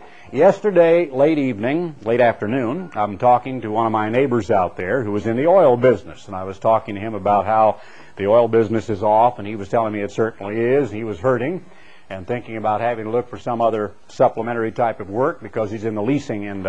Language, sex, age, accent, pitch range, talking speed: English, male, 50-69, American, 110-170 Hz, 225 wpm